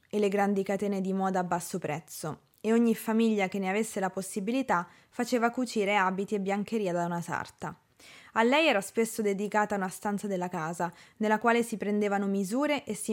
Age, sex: 20-39, female